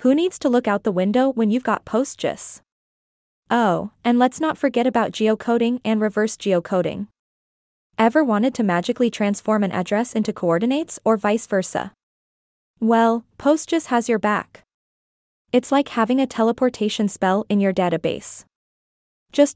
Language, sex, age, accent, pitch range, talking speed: English, female, 20-39, American, 205-250 Hz, 145 wpm